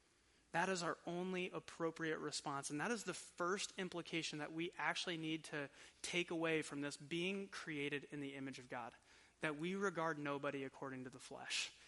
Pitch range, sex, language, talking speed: 155-200 Hz, male, English, 180 wpm